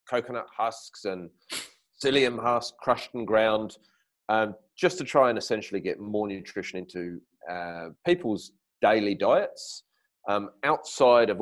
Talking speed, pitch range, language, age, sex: 130 wpm, 90-115 Hz, English, 30-49, male